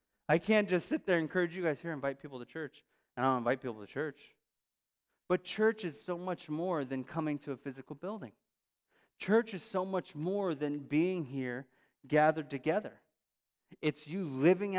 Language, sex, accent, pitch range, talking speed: English, male, American, 125-175 Hz, 190 wpm